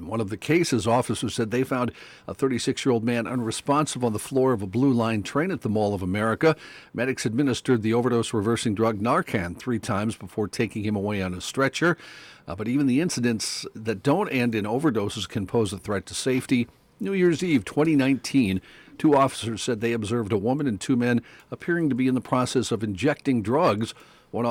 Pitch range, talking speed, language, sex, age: 105-130 Hz, 195 wpm, English, male, 50-69